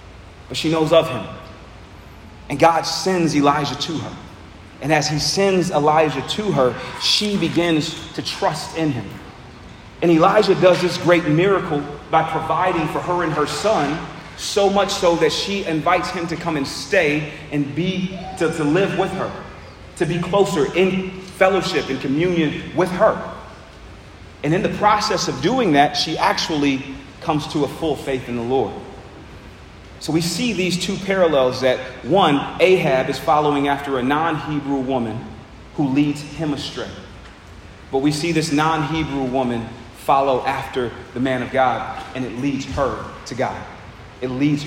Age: 40-59